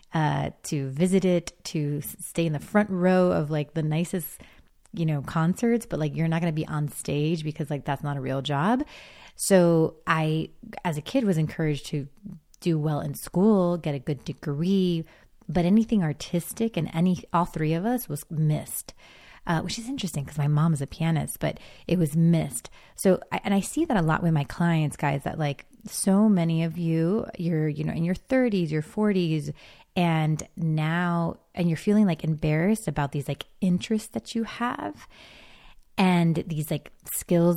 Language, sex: English, female